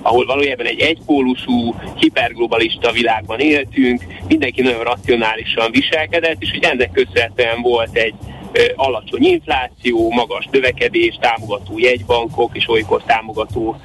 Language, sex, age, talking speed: Hungarian, male, 30-49, 115 wpm